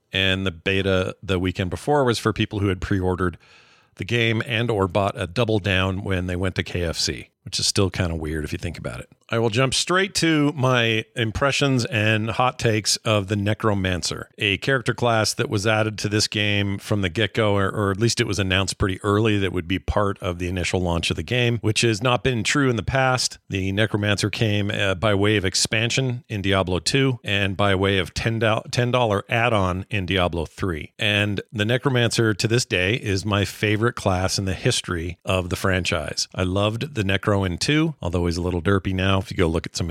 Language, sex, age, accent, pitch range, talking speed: English, male, 40-59, American, 95-120 Hz, 215 wpm